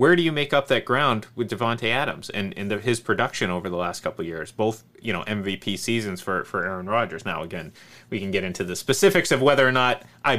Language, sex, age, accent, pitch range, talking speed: English, male, 30-49, American, 105-135 Hz, 250 wpm